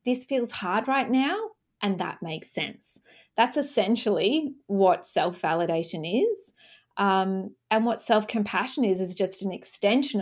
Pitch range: 185-235 Hz